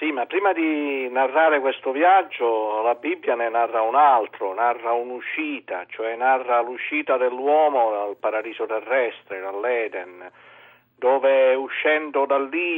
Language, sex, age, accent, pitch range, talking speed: Italian, male, 50-69, native, 110-150 Hz, 125 wpm